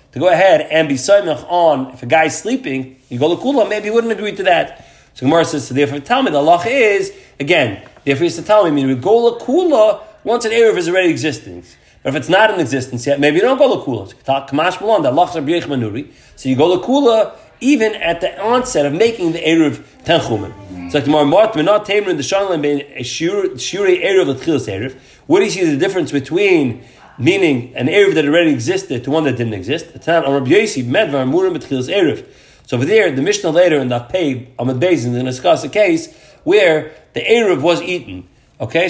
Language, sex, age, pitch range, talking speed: English, male, 30-49, 135-220 Hz, 205 wpm